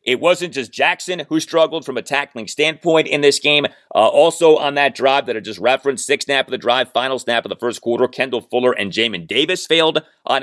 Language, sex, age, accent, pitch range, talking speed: English, male, 30-49, American, 120-185 Hz, 230 wpm